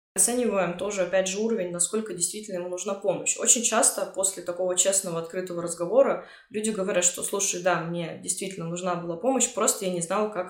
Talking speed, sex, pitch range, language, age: 185 wpm, female, 175-215 Hz, Russian, 20-39